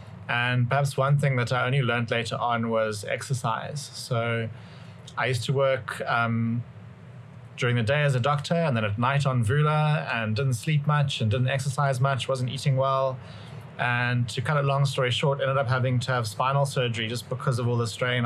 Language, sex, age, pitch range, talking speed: English, male, 30-49, 115-135 Hz, 200 wpm